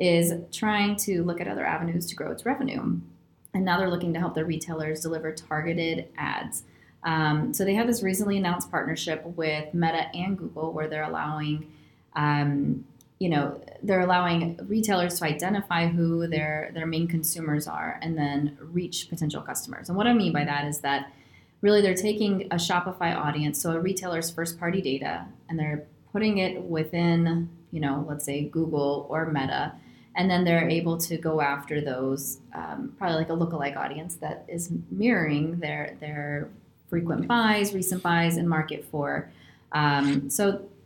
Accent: American